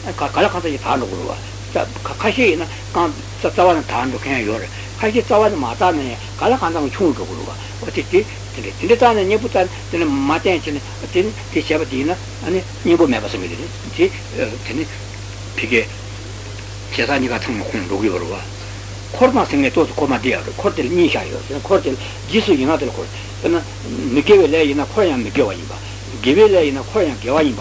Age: 60-79